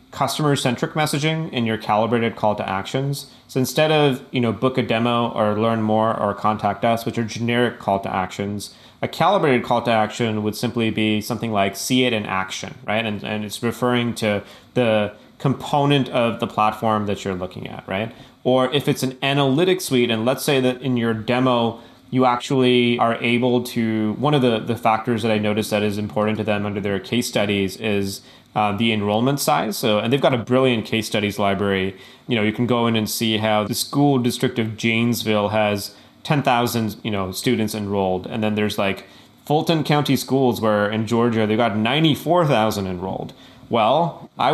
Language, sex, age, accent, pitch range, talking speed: English, male, 30-49, American, 105-125 Hz, 190 wpm